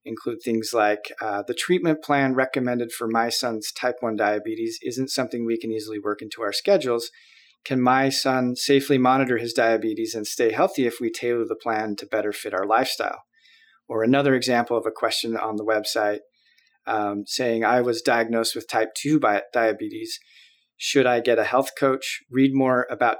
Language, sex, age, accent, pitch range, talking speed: English, male, 30-49, American, 115-135 Hz, 180 wpm